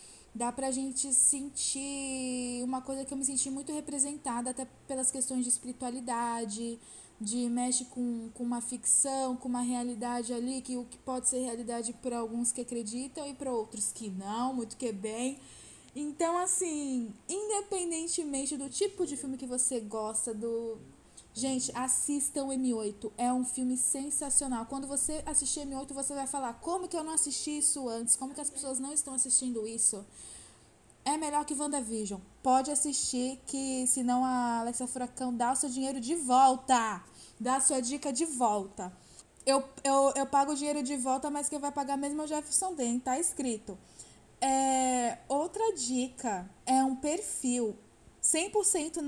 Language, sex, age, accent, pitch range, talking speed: Portuguese, female, 10-29, Brazilian, 240-285 Hz, 165 wpm